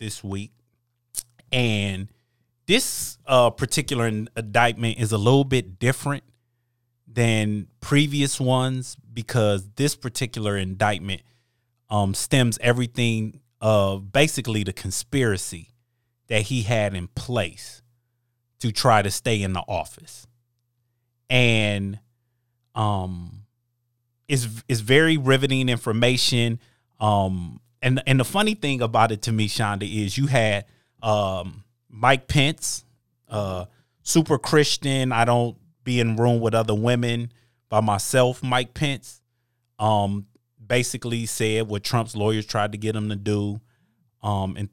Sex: male